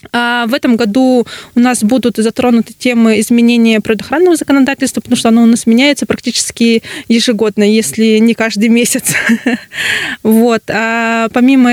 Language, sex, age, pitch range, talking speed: Russian, female, 20-39, 220-240 Hz, 125 wpm